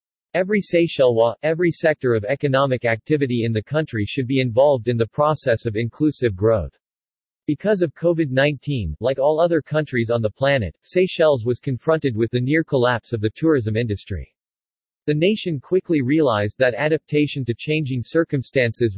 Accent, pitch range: American, 115-155 Hz